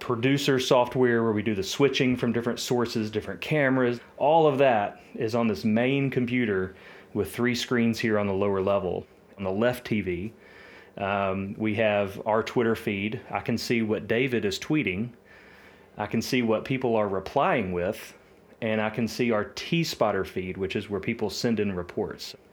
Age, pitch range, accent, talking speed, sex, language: 30-49, 100-125 Hz, American, 180 wpm, male, English